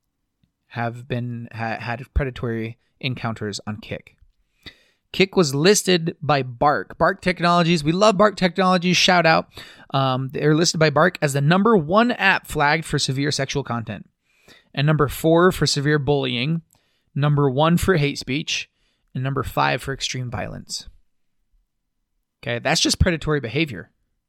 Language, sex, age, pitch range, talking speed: English, male, 20-39, 130-185 Hz, 145 wpm